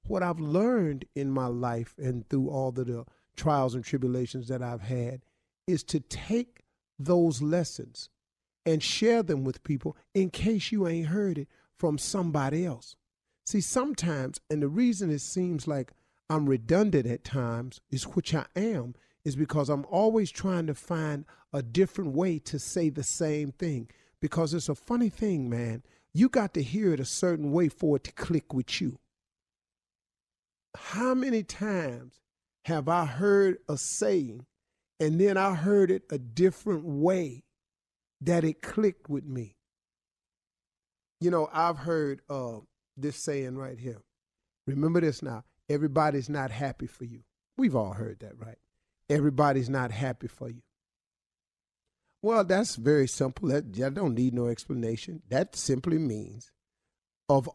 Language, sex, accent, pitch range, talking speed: English, male, American, 130-175 Hz, 155 wpm